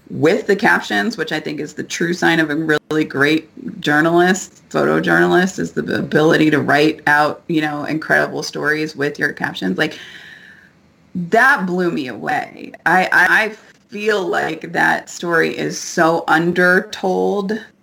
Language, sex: English, female